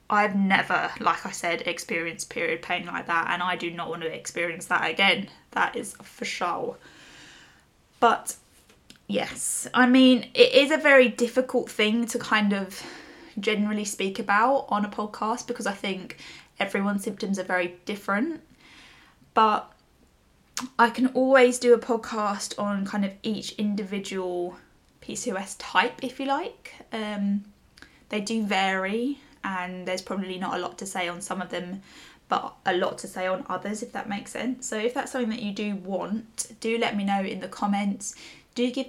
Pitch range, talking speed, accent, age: 195-250 Hz, 170 wpm, British, 10-29